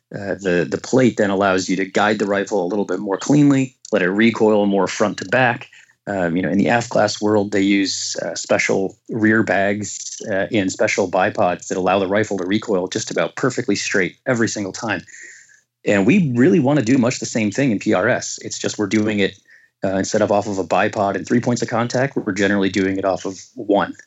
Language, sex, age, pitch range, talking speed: English, male, 30-49, 95-115 Hz, 220 wpm